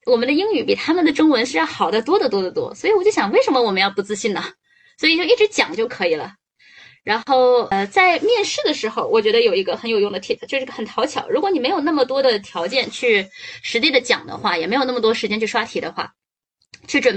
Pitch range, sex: 215-345 Hz, female